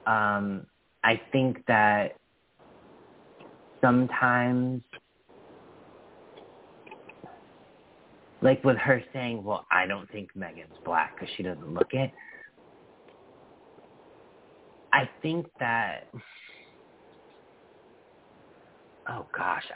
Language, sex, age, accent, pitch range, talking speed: English, male, 40-59, American, 105-140 Hz, 75 wpm